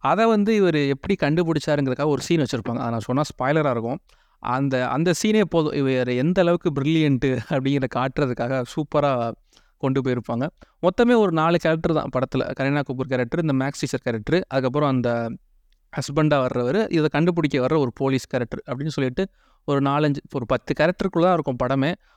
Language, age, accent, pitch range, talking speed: Tamil, 30-49, native, 135-175 Hz, 155 wpm